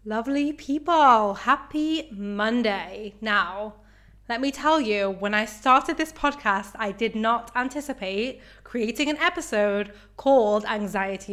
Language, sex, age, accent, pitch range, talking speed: English, female, 20-39, British, 205-250 Hz, 120 wpm